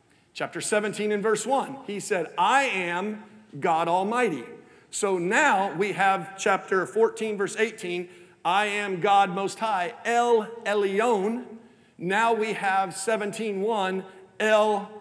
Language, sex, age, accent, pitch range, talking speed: English, male, 50-69, American, 195-235 Hz, 125 wpm